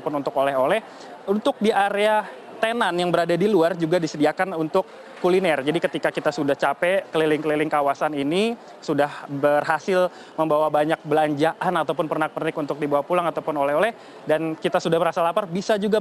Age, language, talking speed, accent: 20-39, Indonesian, 155 wpm, native